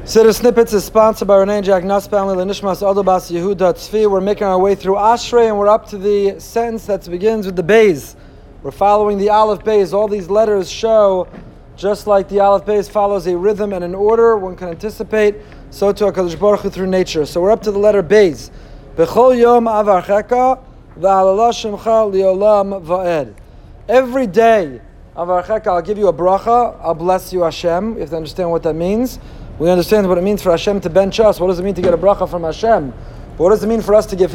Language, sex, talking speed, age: Hebrew, male, 220 wpm, 30-49